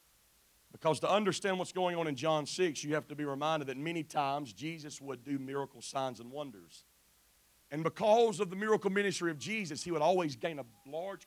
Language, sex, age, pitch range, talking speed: English, male, 40-59, 135-195 Hz, 200 wpm